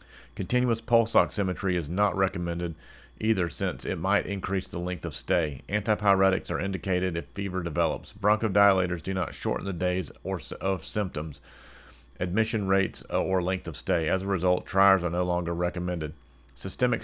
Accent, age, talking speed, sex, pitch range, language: American, 40-59, 155 wpm, male, 85-95 Hz, English